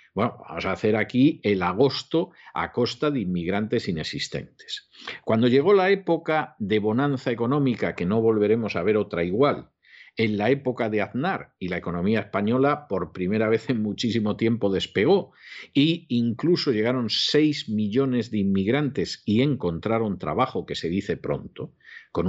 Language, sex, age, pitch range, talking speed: Spanish, male, 50-69, 100-135 Hz, 155 wpm